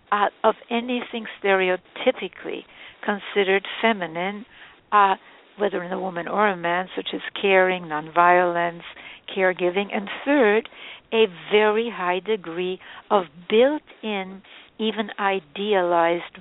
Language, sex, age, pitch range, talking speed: English, female, 60-79, 185-215 Hz, 105 wpm